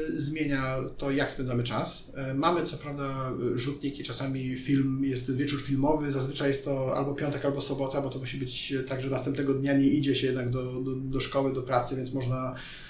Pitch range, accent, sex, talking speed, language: 130-150 Hz, native, male, 190 wpm, Polish